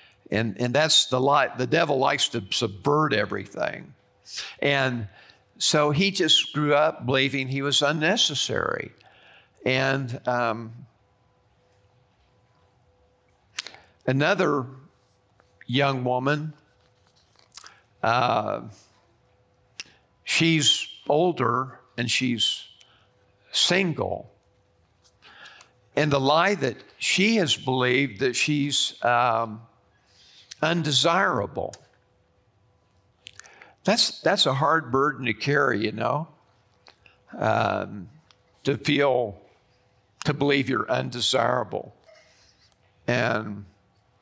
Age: 50-69